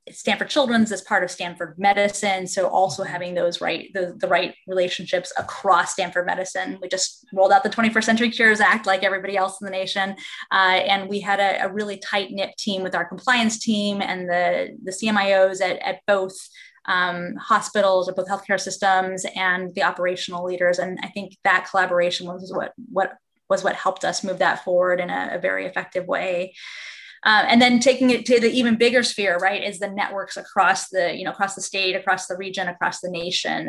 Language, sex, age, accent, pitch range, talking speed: English, female, 20-39, American, 180-200 Hz, 200 wpm